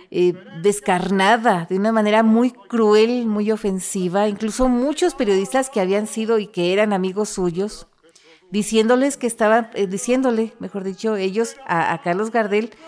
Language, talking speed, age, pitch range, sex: Spanish, 150 wpm, 40-59, 185-240 Hz, female